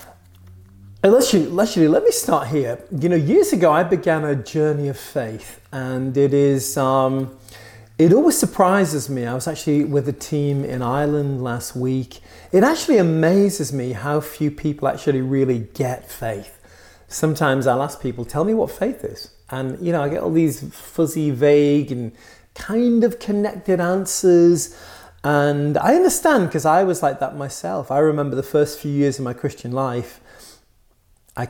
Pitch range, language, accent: 125-155 Hz, English, British